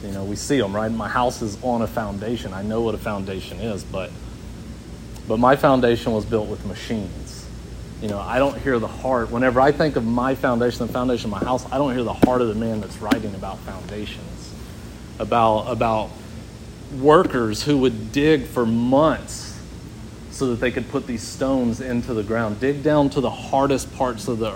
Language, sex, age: English, male, 30-49